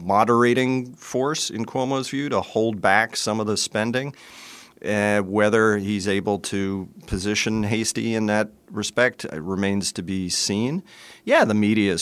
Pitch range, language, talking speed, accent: 95-110 Hz, English, 155 wpm, American